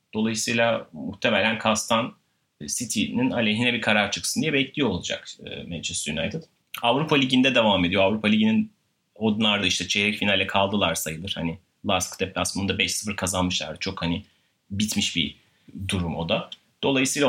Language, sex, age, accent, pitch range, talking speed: Turkish, male, 30-49, native, 100-130 Hz, 140 wpm